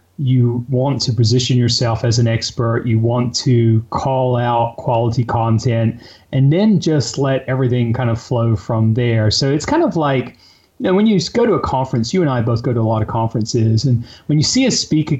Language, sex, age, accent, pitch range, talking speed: English, male, 30-49, American, 120-155 Hz, 215 wpm